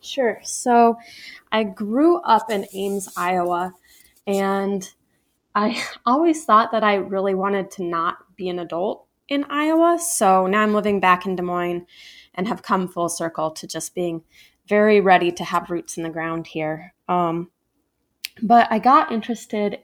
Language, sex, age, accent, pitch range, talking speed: English, female, 20-39, American, 180-225 Hz, 160 wpm